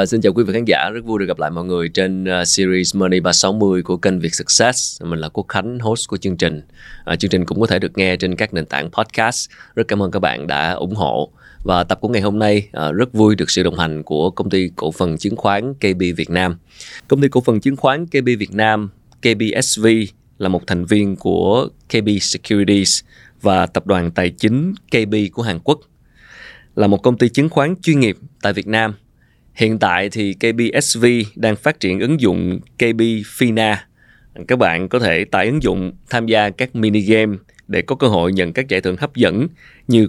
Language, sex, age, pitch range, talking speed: Vietnamese, male, 20-39, 90-115 Hz, 210 wpm